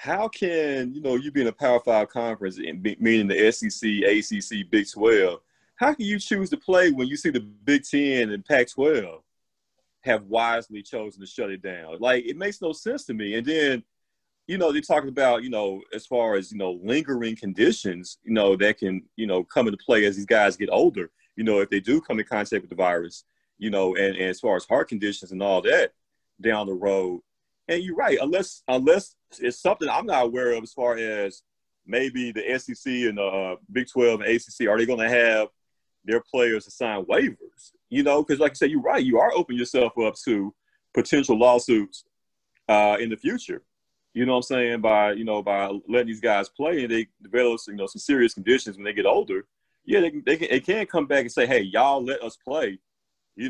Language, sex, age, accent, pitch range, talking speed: English, male, 30-49, American, 100-140 Hz, 220 wpm